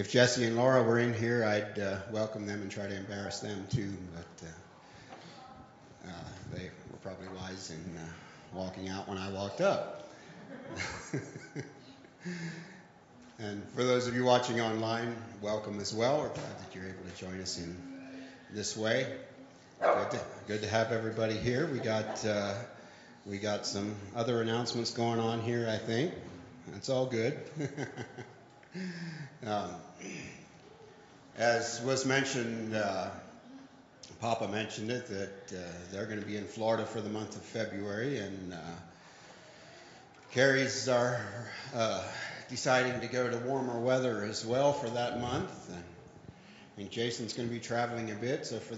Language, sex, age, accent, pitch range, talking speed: English, male, 40-59, American, 100-120 Hz, 150 wpm